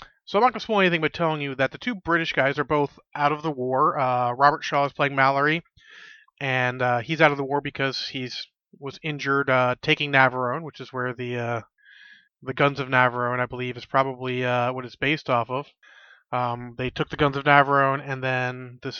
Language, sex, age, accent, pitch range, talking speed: English, male, 30-49, American, 125-150 Hz, 220 wpm